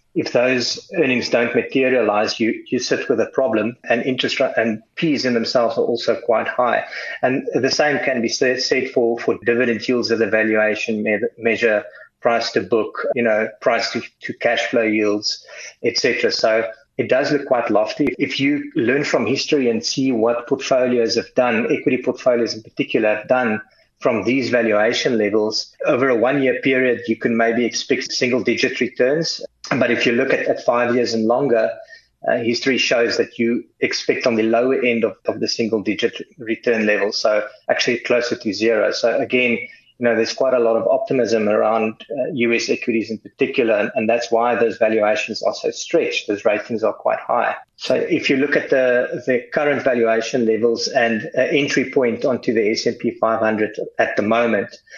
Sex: male